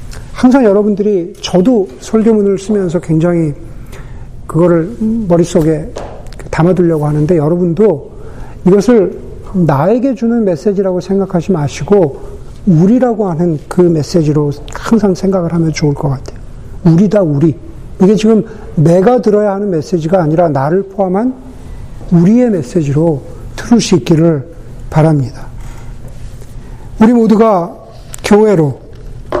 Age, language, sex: 50-69, Korean, male